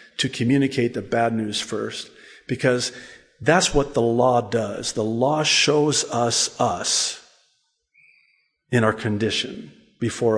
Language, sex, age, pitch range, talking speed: English, male, 50-69, 125-175 Hz, 120 wpm